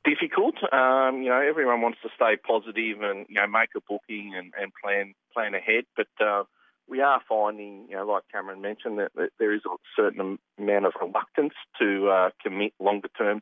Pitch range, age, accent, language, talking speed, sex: 90-120 Hz, 40-59, Australian, English, 195 wpm, male